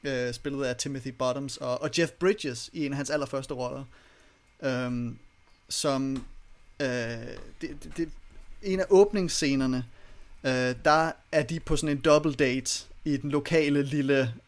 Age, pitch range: 30-49, 125-150 Hz